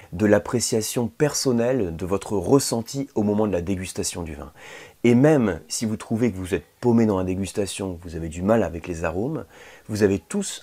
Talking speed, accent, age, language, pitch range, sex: 200 wpm, French, 30-49, French, 90-120 Hz, male